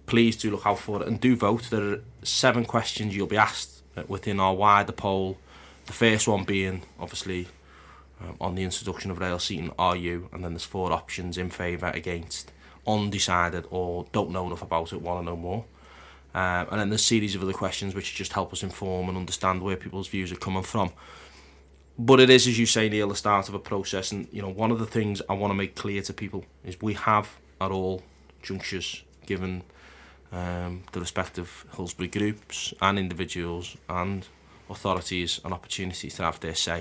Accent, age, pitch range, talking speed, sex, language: British, 20-39, 85-100 Hz, 200 wpm, male, English